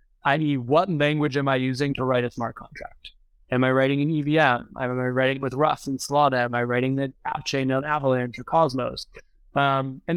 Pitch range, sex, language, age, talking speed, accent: 130-155 Hz, male, English, 20-39, 210 wpm, American